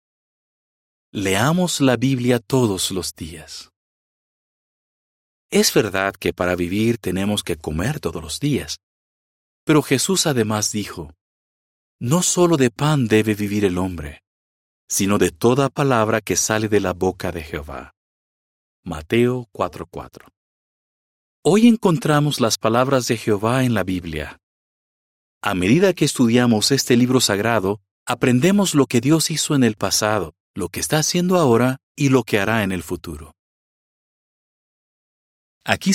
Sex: male